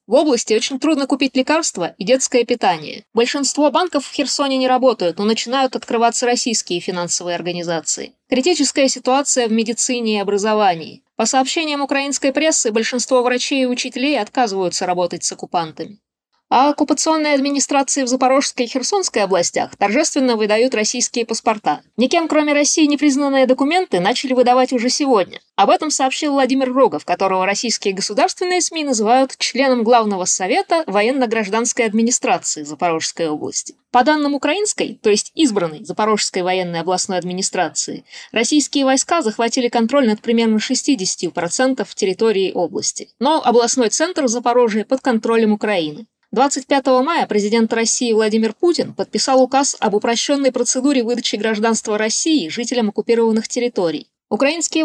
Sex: female